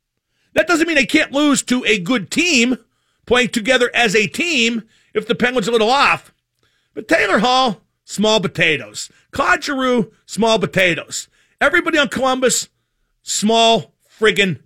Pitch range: 185-250 Hz